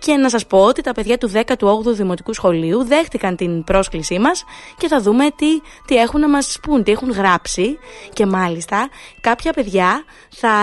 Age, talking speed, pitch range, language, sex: 20-39, 180 wpm, 190-265 Hz, Greek, female